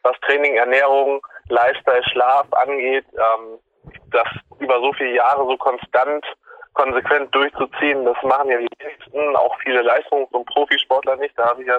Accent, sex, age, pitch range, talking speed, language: German, male, 20-39, 125-150 Hz, 160 wpm, German